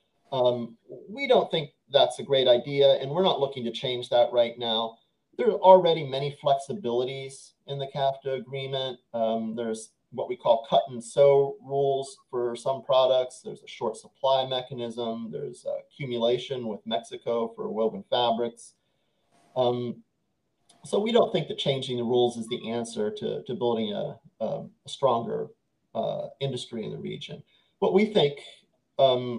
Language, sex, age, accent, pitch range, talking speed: English, male, 30-49, American, 120-150 Hz, 160 wpm